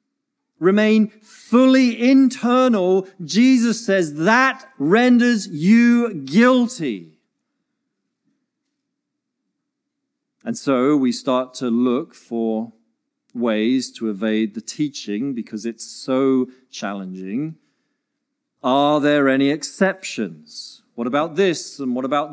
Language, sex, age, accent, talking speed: English, male, 40-59, British, 95 wpm